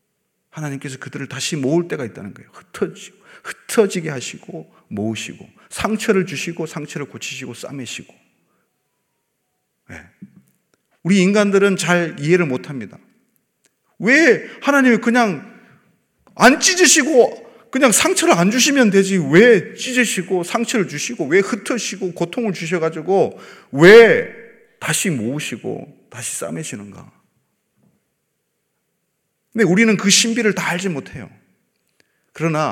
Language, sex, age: Korean, male, 40-59